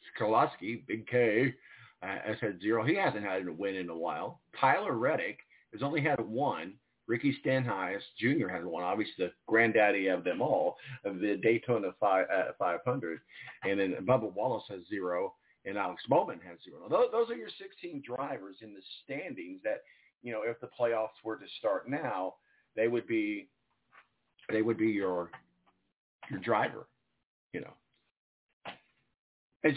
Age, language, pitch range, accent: 50-69, English, 105-130 Hz, American